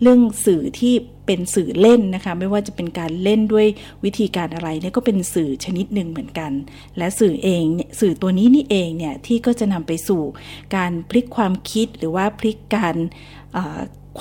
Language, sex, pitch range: Thai, female, 165-215 Hz